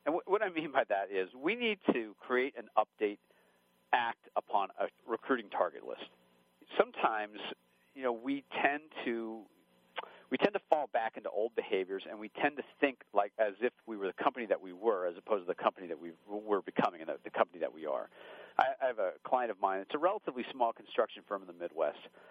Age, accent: 50-69, American